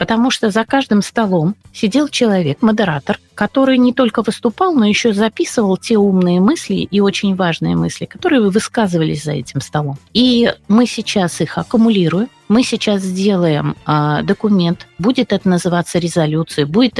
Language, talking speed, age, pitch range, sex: Russian, 150 wpm, 30-49, 165-220 Hz, female